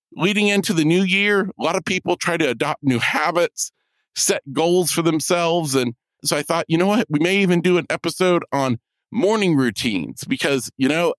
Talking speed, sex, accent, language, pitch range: 200 wpm, male, American, English, 150-205 Hz